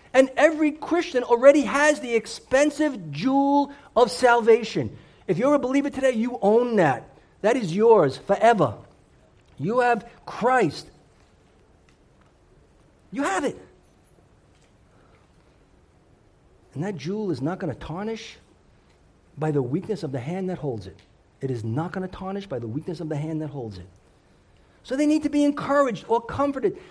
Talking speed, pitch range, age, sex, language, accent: 150 wpm, 180-265 Hz, 50-69, male, English, American